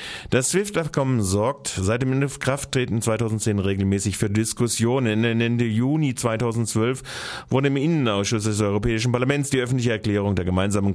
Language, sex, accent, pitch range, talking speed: German, male, German, 95-125 Hz, 135 wpm